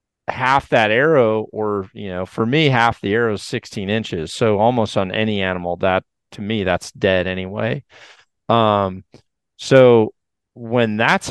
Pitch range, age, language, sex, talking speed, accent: 100-120 Hz, 40-59, English, male, 155 wpm, American